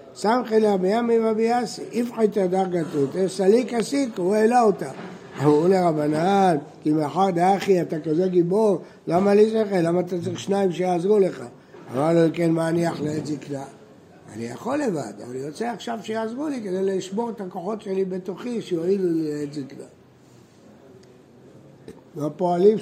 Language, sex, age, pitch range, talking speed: Hebrew, male, 60-79, 155-205 Hz, 155 wpm